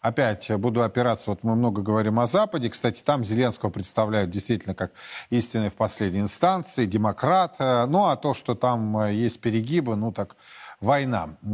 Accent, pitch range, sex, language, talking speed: native, 115-145 Hz, male, Russian, 155 wpm